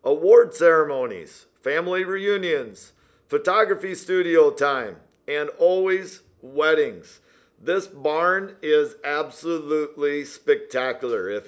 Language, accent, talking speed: English, American, 85 wpm